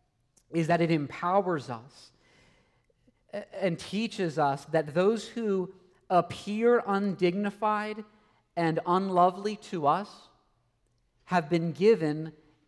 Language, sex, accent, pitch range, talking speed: English, male, American, 150-185 Hz, 95 wpm